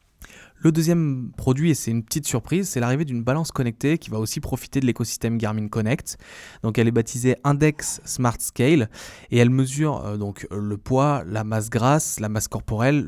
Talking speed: 190 wpm